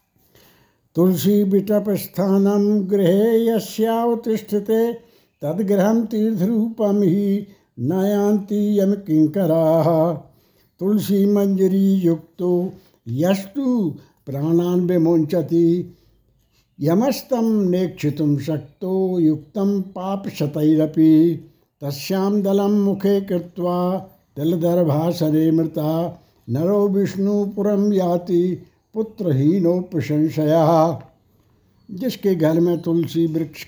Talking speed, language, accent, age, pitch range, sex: 50 wpm, Hindi, native, 60-79, 160-200 Hz, male